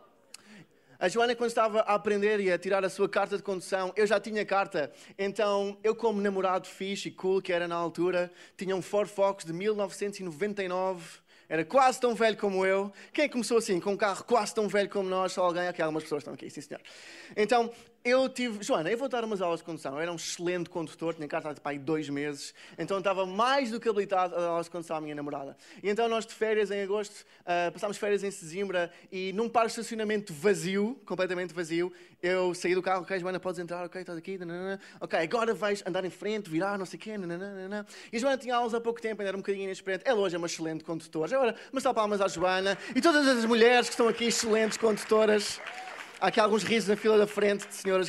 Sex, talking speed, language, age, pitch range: male, 230 wpm, Portuguese, 20-39, 180-225 Hz